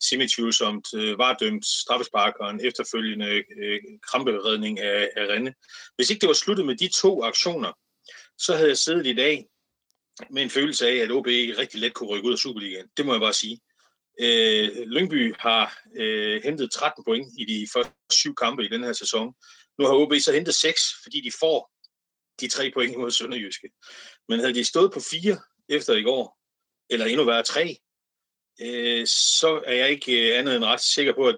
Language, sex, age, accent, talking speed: Danish, male, 30-49, native, 185 wpm